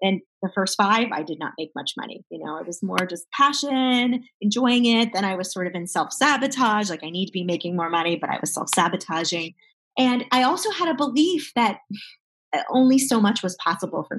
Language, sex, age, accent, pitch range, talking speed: English, female, 30-49, American, 175-240 Hz, 215 wpm